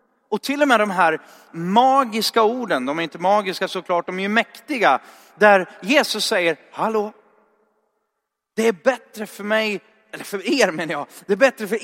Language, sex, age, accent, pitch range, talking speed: Swedish, male, 30-49, native, 185-250 Hz, 175 wpm